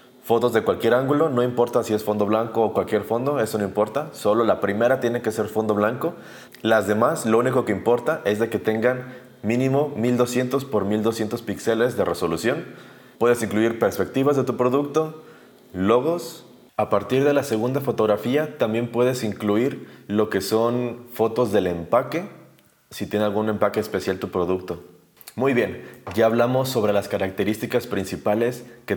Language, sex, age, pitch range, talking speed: Spanish, male, 20-39, 105-125 Hz, 165 wpm